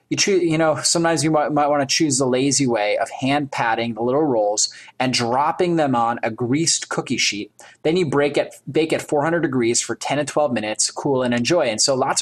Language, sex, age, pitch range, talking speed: English, male, 20-39, 125-155 Hz, 220 wpm